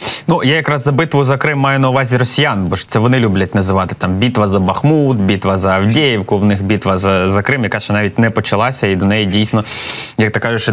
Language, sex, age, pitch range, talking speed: Ukrainian, male, 20-39, 105-125 Hz, 235 wpm